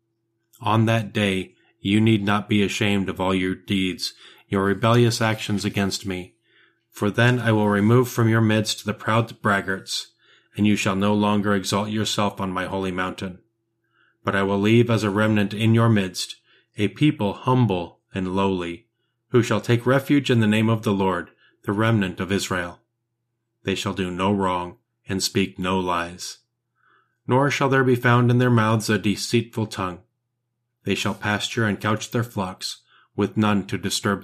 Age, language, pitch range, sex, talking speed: 30-49, English, 100-115 Hz, male, 175 wpm